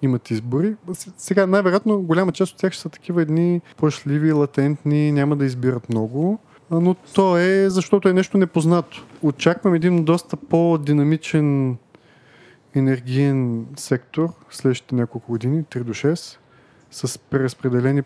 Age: 30-49